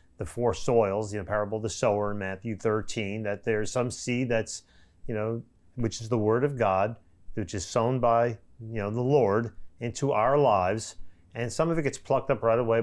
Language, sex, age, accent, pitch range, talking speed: English, male, 40-59, American, 105-130 Hz, 215 wpm